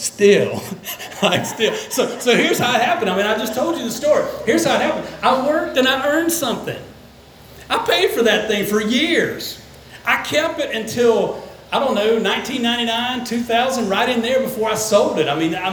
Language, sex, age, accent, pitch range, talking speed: English, male, 40-59, American, 195-265 Hz, 200 wpm